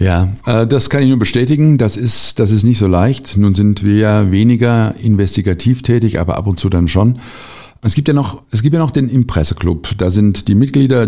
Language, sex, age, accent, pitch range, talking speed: German, male, 50-69, German, 100-130 Hz, 215 wpm